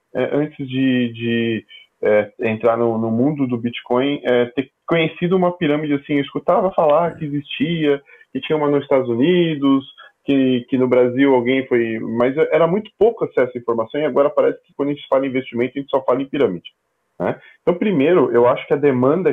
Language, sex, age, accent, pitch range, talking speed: Portuguese, male, 10-29, Brazilian, 115-145 Hz, 200 wpm